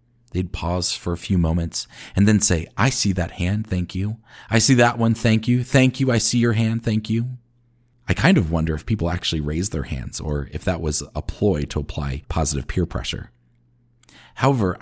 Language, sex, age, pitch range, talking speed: English, male, 40-59, 85-120 Hz, 205 wpm